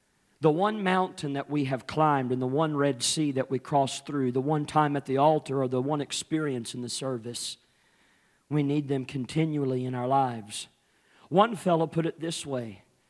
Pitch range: 130-155 Hz